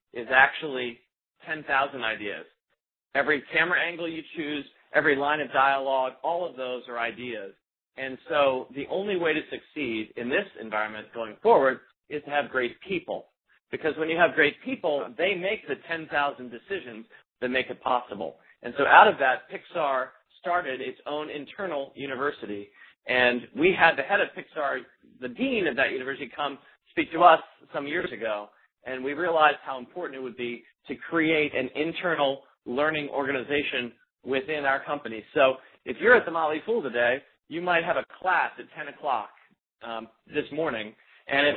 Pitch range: 125-160 Hz